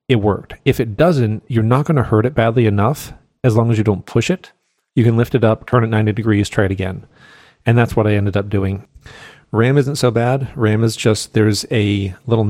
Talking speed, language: 235 wpm, English